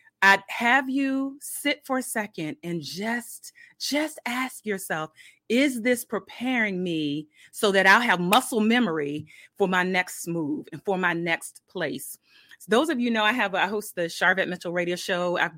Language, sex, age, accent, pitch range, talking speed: English, female, 30-49, American, 175-240 Hz, 175 wpm